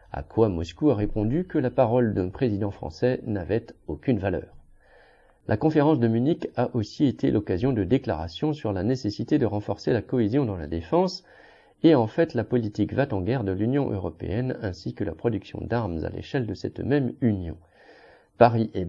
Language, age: French, 40-59